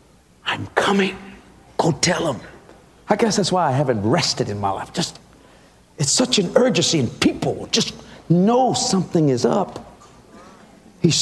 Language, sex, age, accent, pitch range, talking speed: English, male, 50-69, American, 170-240 Hz, 150 wpm